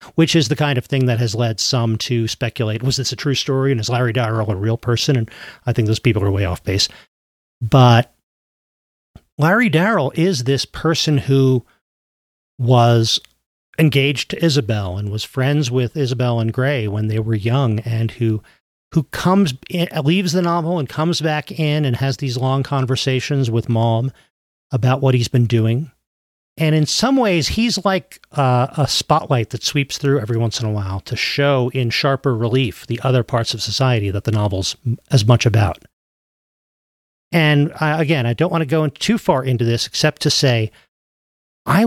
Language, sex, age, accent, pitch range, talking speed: English, male, 40-59, American, 115-150 Hz, 180 wpm